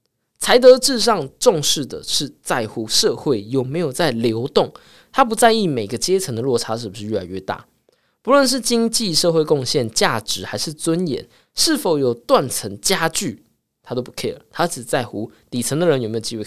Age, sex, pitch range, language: 20-39, male, 115-190 Hz, Chinese